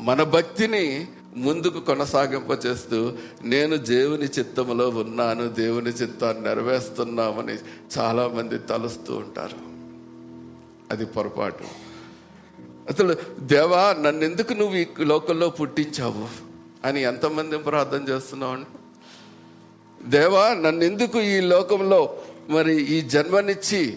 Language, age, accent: Telugu, 50-69, native